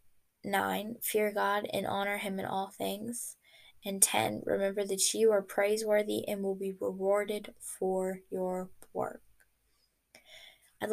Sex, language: female, English